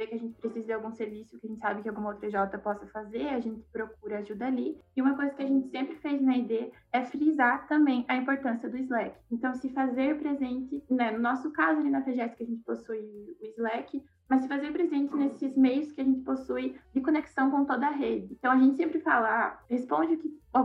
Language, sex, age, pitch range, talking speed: Portuguese, female, 20-39, 230-270 Hz, 235 wpm